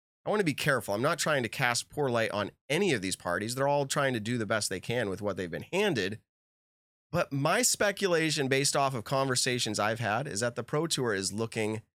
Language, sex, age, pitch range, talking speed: English, male, 30-49, 105-145 Hz, 235 wpm